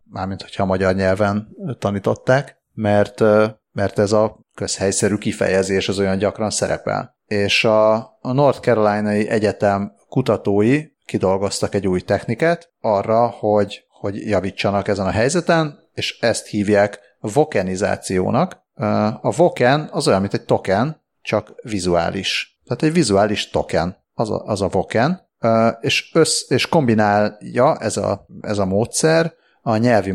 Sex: male